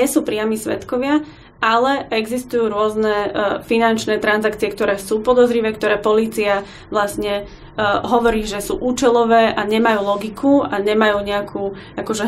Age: 20-39